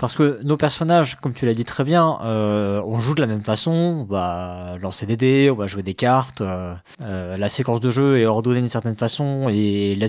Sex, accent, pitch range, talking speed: male, French, 115-150 Hz, 230 wpm